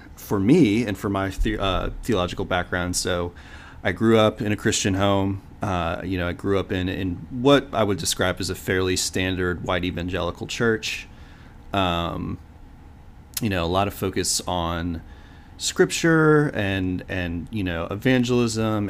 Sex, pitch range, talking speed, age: male, 85-100 Hz, 160 wpm, 30-49